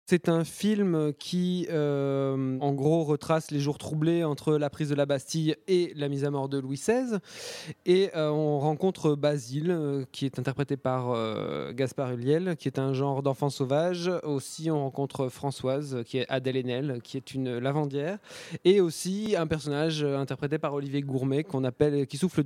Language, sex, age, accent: French, male, 20-39, French